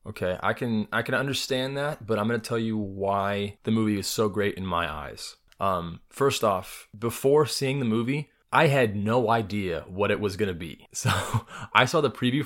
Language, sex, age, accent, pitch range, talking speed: English, male, 20-39, American, 95-115 Hz, 200 wpm